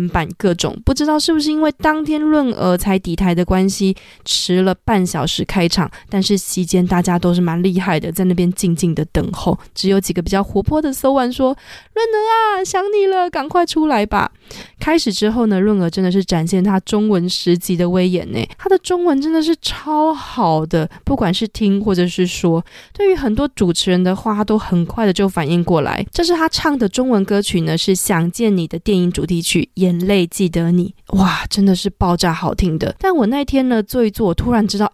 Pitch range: 180-240 Hz